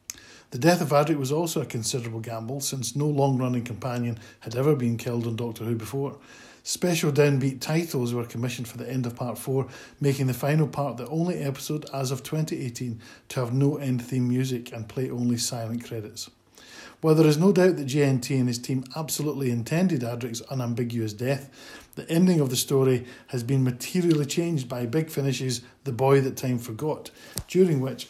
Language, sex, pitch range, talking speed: English, male, 120-145 Hz, 185 wpm